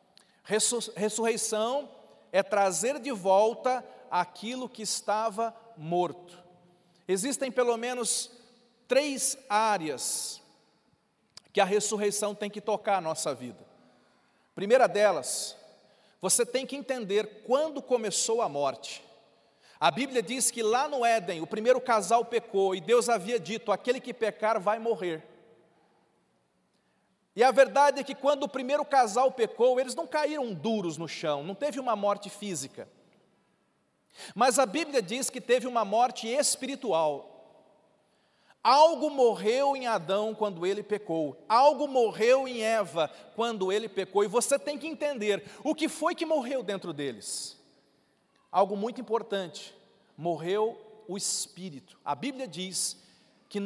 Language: Portuguese